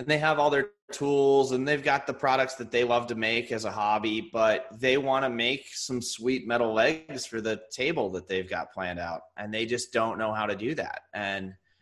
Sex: male